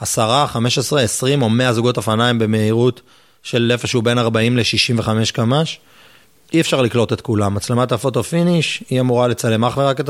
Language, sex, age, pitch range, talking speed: Hebrew, male, 30-49, 110-125 Hz, 180 wpm